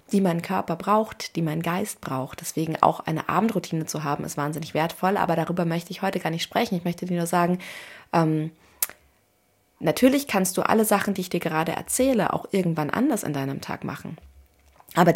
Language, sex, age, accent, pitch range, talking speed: German, female, 30-49, German, 165-200 Hz, 195 wpm